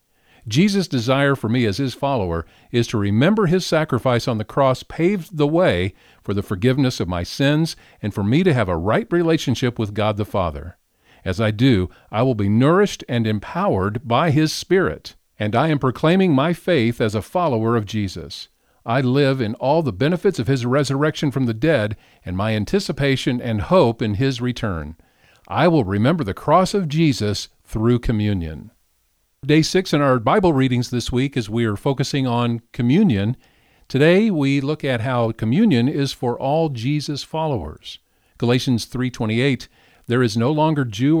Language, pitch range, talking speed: English, 110-145 Hz, 180 wpm